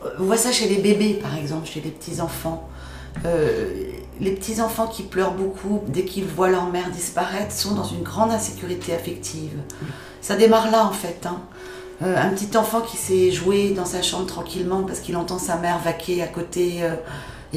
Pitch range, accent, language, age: 170-205 Hz, French, French, 40-59